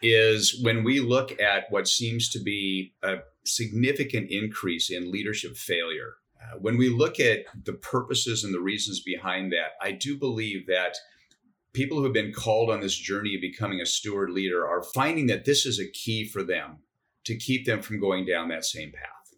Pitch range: 95-125 Hz